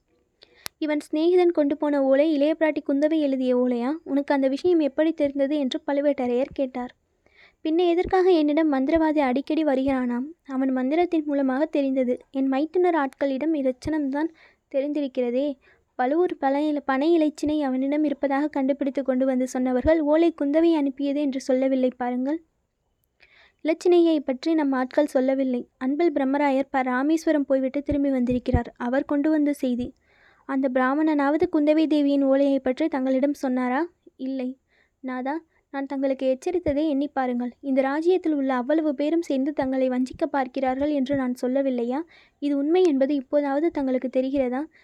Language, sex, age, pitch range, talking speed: Tamil, female, 20-39, 265-310 Hz, 130 wpm